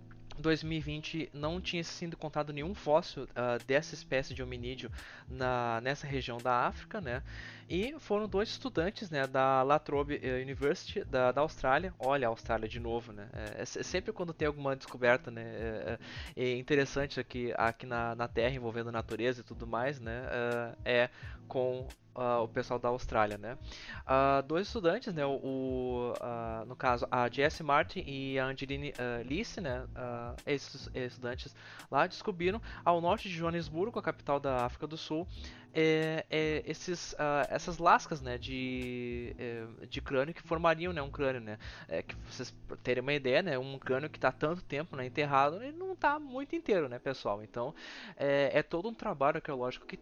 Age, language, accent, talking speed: 20-39, Portuguese, Brazilian, 170 wpm